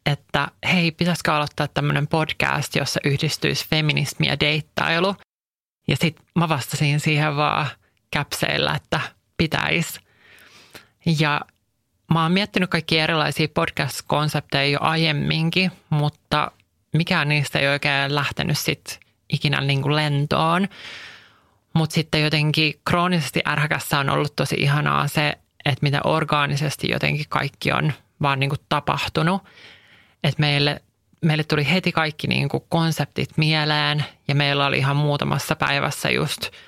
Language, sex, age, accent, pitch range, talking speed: English, male, 30-49, Finnish, 140-160 Hz, 115 wpm